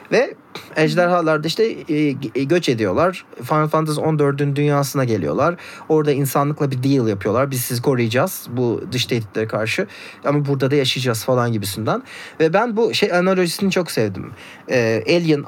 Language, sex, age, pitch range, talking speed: Turkish, male, 30-49, 125-175 Hz, 140 wpm